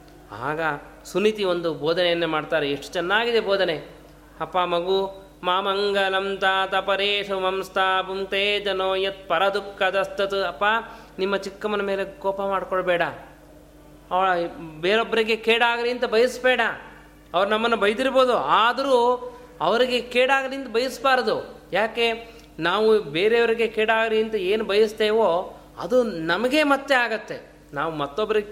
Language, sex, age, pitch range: Kannada, male, 30-49, 180-235 Hz